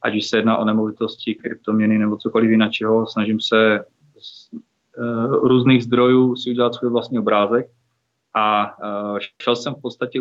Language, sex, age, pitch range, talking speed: Czech, male, 30-49, 110-125 Hz, 145 wpm